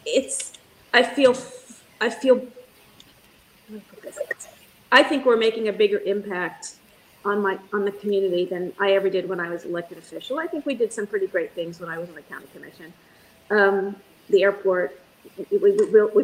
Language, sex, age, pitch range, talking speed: English, female, 40-59, 190-255 Hz, 165 wpm